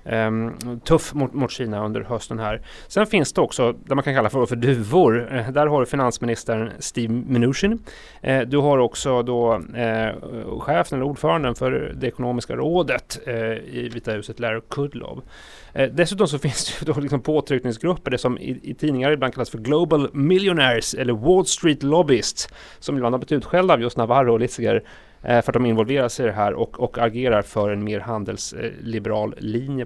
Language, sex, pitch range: Swedish, male, 120-150 Hz